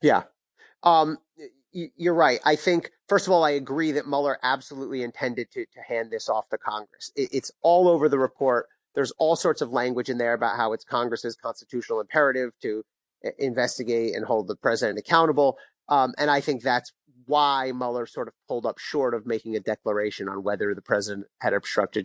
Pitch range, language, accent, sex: 120-170 Hz, English, American, male